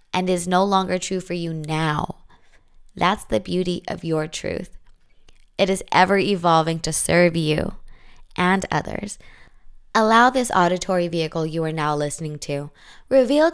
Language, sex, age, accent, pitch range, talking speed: English, female, 20-39, American, 175-230 Hz, 140 wpm